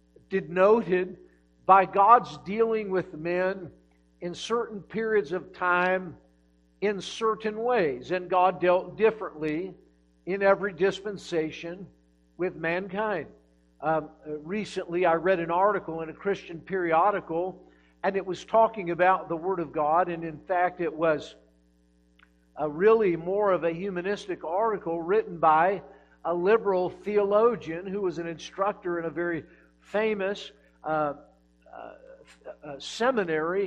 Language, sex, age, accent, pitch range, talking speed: English, male, 50-69, American, 165-205 Hz, 125 wpm